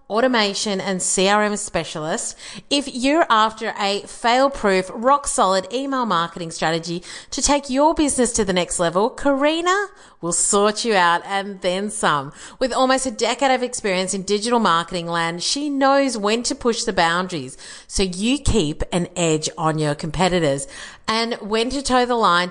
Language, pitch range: English, 180-240 Hz